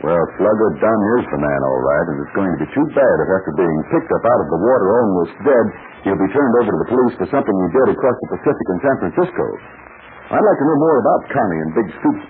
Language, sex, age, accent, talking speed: English, male, 60-79, American, 260 wpm